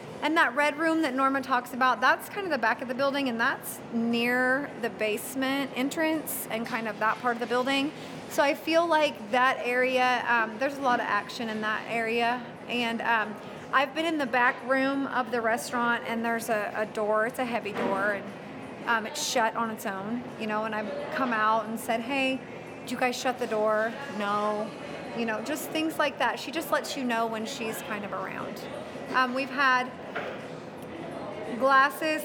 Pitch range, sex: 225-265 Hz, female